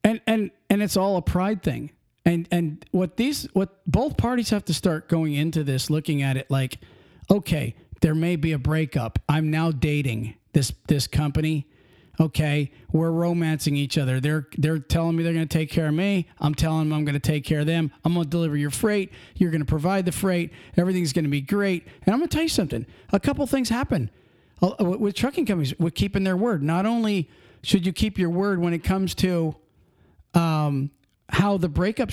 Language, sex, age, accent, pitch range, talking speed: English, male, 40-59, American, 150-195 Hz, 215 wpm